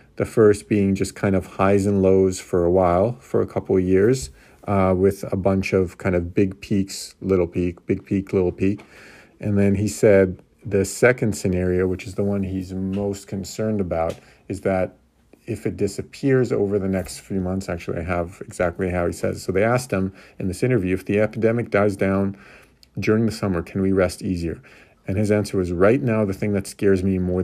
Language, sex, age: English, male, 40-59